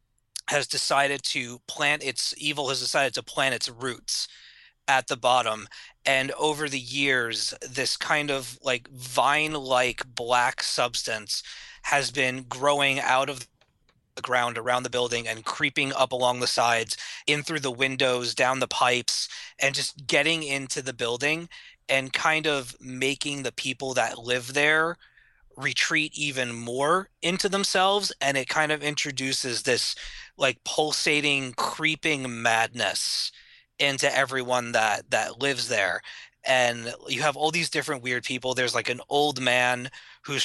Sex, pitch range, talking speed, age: male, 125-145 Hz, 150 wpm, 20-39